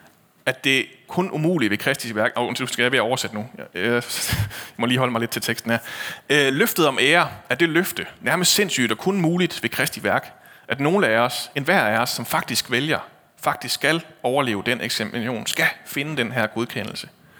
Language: Danish